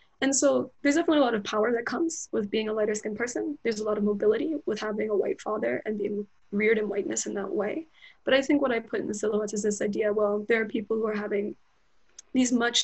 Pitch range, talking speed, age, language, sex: 210-265 Hz, 255 wpm, 20-39, English, female